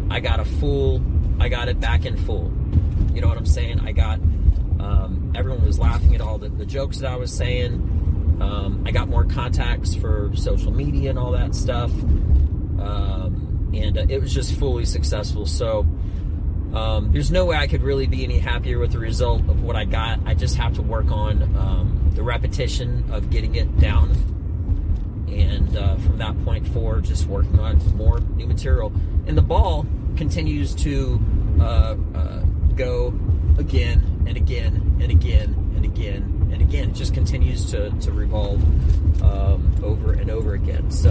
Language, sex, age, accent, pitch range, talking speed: English, male, 30-49, American, 80-95 Hz, 180 wpm